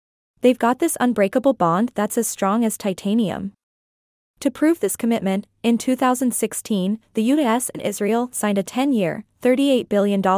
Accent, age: American, 20-39